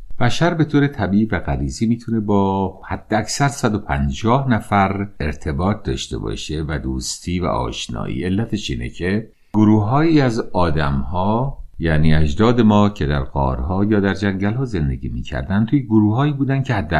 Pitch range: 75-115 Hz